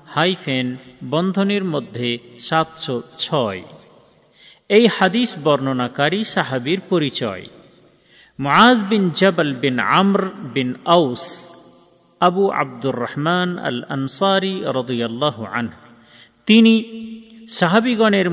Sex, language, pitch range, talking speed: male, Bengali, 125-180 Hz, 35 wpm